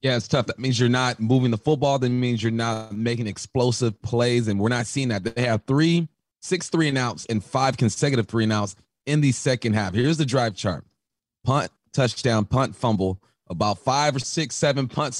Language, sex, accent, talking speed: English, male, American, 195 wpm